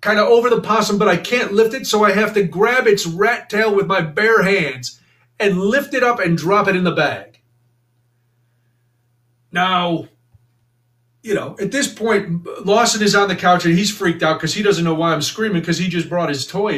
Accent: American